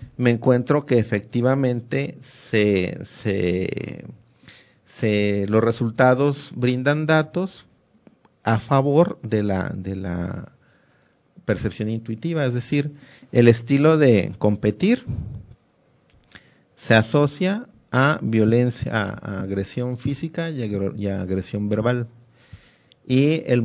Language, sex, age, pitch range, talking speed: Spanish, male, 50-69, 110-140 Hz, 95 wpm